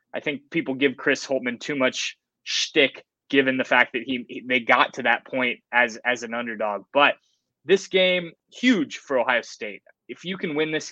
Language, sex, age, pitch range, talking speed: English, male, 20-39, 125-150 Hz, 200 wpm